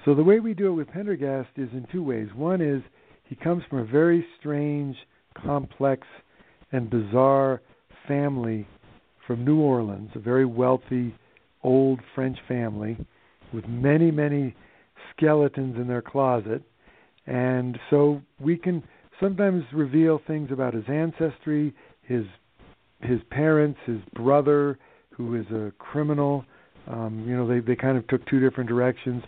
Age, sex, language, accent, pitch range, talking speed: 60-79, male, English, American, 120-150 Hz, 145 wpm